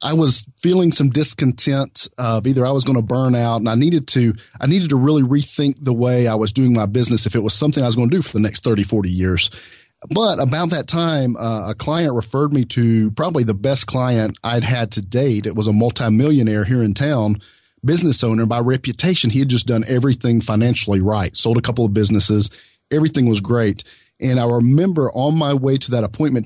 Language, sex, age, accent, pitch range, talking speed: English, male, 40-59, American, 110-135 Hz, 220 wpm